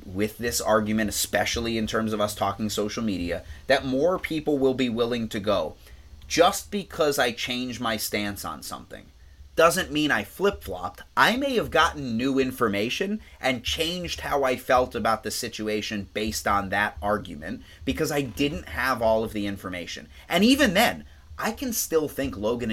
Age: 30-49